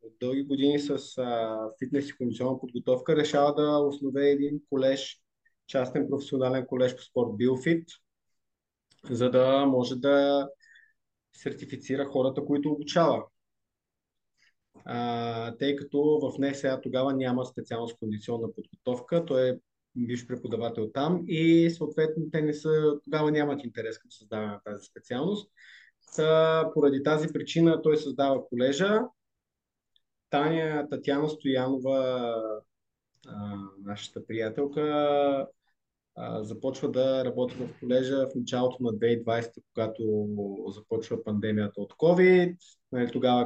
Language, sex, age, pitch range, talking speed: Bulgarian, male, 20-39, 125-150 Hz, 115 wpm